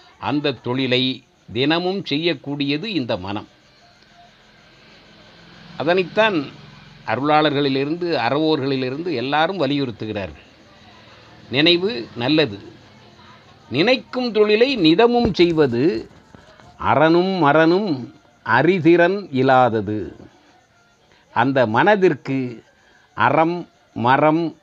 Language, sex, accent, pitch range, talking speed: Tamil, male, native, 125-170 Hz, 60 wpm